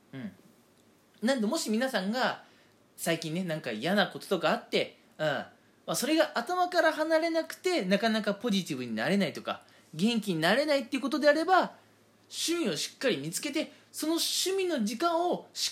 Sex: male